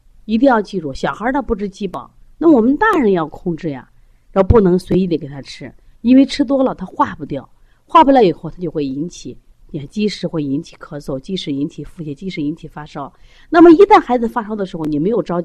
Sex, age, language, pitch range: female, 30-49, Chinese, 150-220 Hz